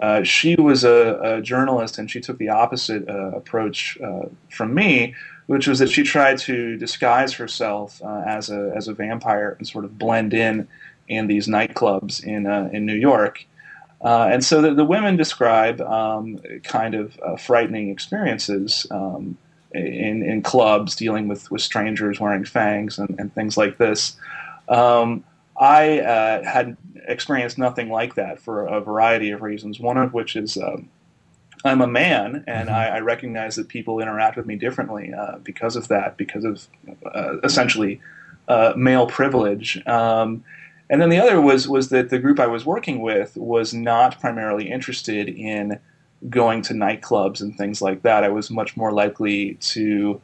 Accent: American